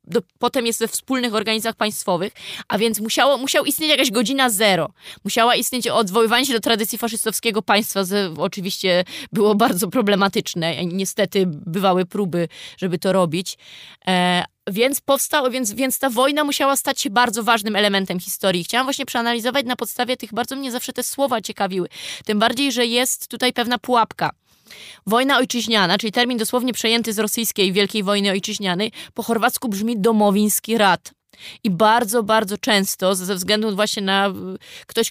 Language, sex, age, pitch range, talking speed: Polish, female, 20-39, 205-235 Hz, 155 wpm